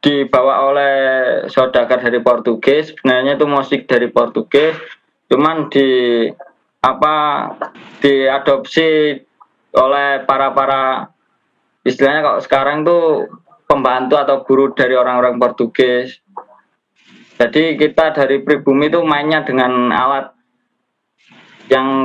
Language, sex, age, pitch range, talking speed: Indonesian, male, 20-39, 125-150 Hz, 100 wpm